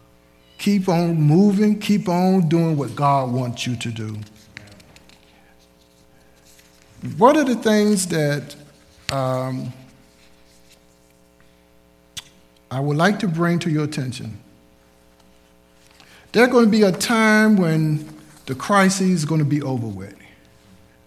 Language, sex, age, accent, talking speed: English, male, 60-79, American, 115 wpm